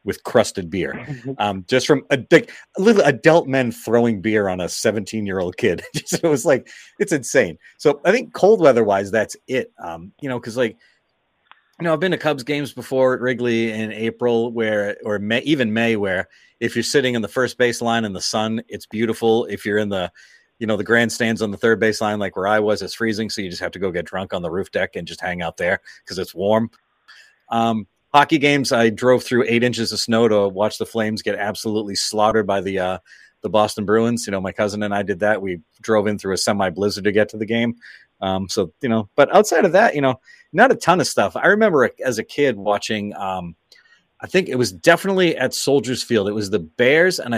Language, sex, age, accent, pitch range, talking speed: English, male, 30-49, American, 105-125 Hz, 230 wpm